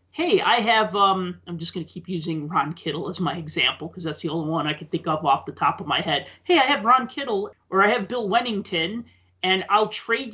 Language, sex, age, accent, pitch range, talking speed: English, male, 40-59, American, 165-220 Hz, 250 wpm